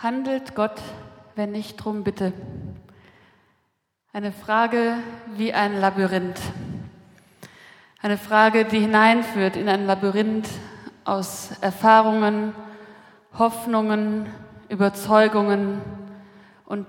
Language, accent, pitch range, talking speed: German, German, 200-230 Hz, 80 wpm